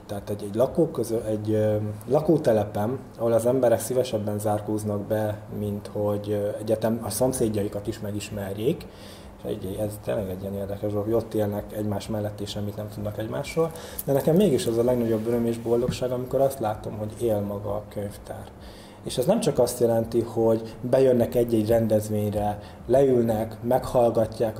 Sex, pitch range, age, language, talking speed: male, 105-125 Hz, 20-39, Hungarian, 150 wpm